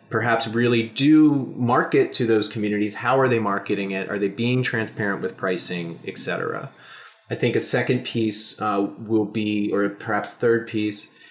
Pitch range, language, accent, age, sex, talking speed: 105-125 Hz, English, American, 30-49, male, 170 wpm